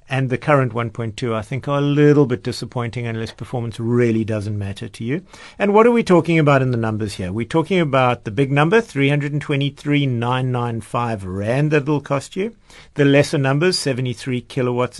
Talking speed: 180 wpm